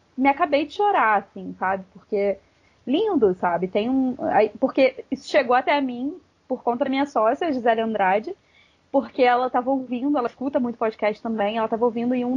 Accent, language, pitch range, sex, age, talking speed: Brazilian, Portuguese, 205-260 Hz, female, 20-39, 195 wpm